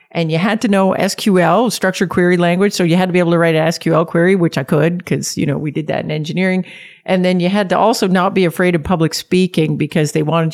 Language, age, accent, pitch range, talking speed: English, 50-69, American, 165-205 Hz, 260 wpm